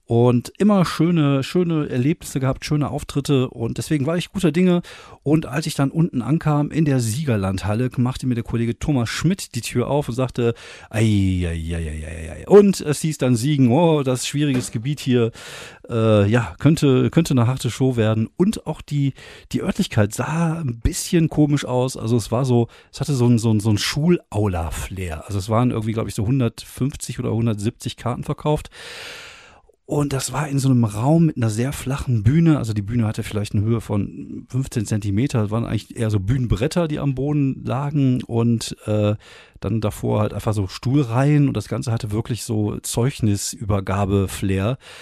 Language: German